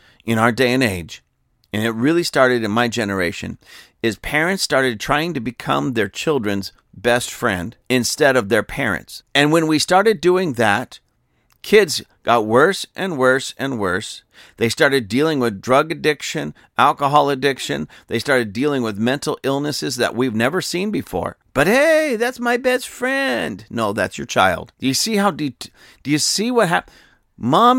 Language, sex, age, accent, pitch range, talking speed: English, male, 50-69, American, 120-155 Hz, 170 wpm